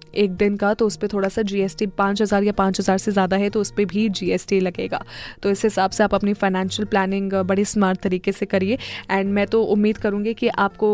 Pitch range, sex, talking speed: 195-225 Hz, female, 235 wpm